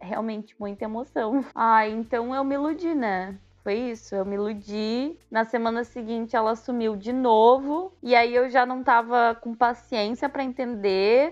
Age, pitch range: 20-39, 215-280 Hz